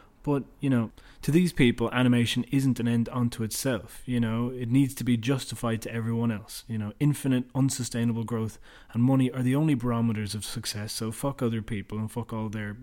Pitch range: 110-130 Hz